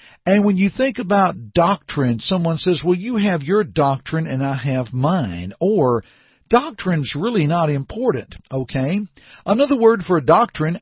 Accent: American